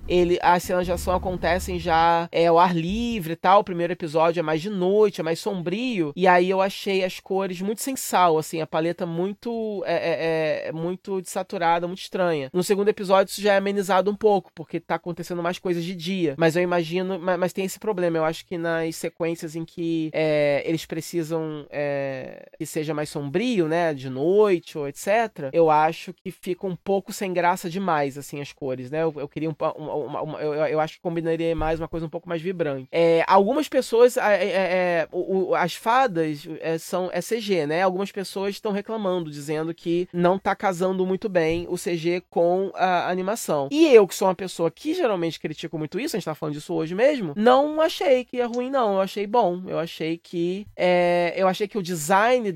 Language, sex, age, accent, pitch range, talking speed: Portuguese, male, 20-39, Brazilian, 165-195 Hz, 210 wpm